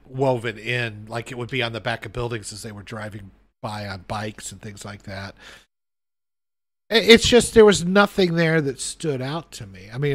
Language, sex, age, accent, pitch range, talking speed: English, male, 50-69, American, 115-155 Hz, 205 wpm